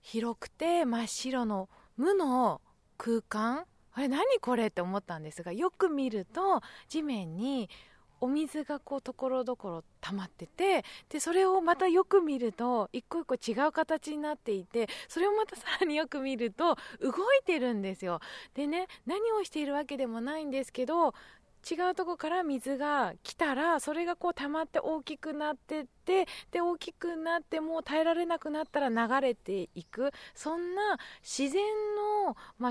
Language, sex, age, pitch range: Japanese, female, 20-39, 215-320 Hz